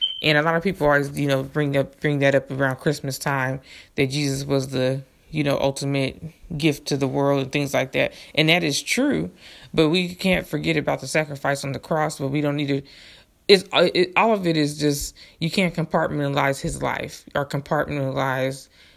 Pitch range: 140-160 Hz